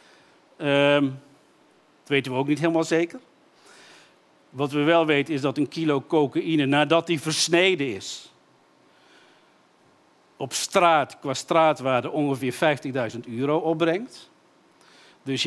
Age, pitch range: 60-79, 125-150 Hz